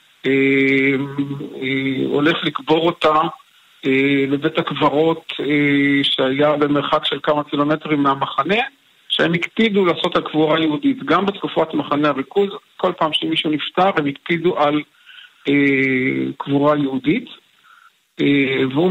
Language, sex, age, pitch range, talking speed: Hebrew, male, 50-69, 140-175 Hz, 100 wpm